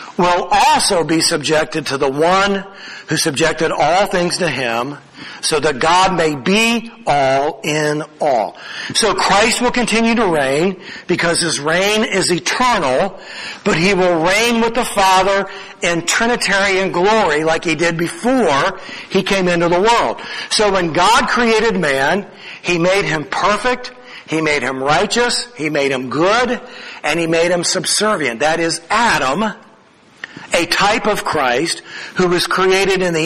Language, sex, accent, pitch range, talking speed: English, male, American, 160-215 Hz, 155 wpm